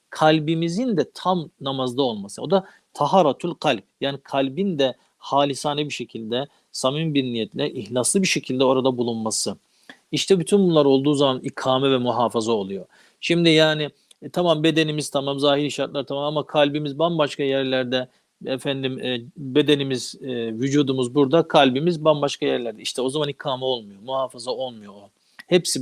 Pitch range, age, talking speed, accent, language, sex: 125-155 Hz, 40-59, 145 wpm, native, Turkish, male